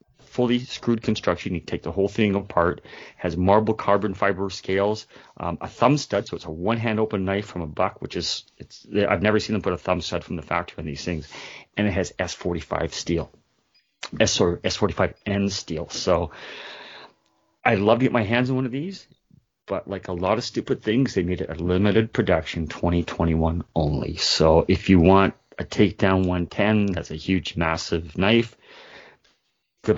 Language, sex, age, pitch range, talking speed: English, male, 30-49, 85-105 Hz, 190 wpm